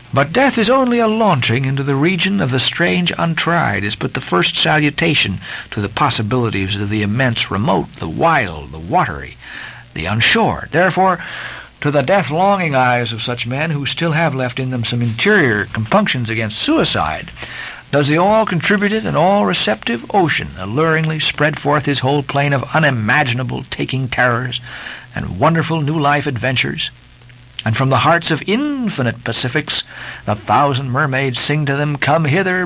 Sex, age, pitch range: male, 60-79, 125-185 Hz